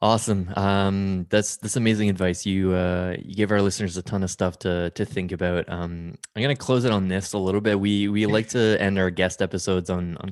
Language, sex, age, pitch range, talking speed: English, male, 20-39, 90-110 Hz, 235 wpm